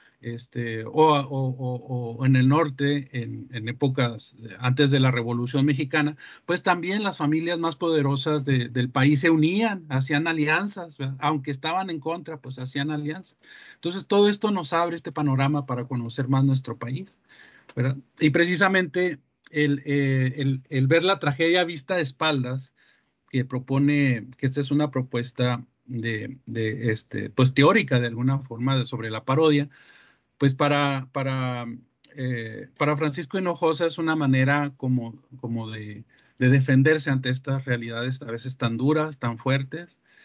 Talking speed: 155 wpm